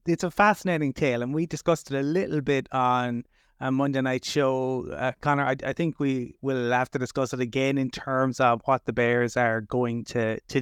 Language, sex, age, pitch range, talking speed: English, male, 30-49, 125-145 Hz, 215 wpm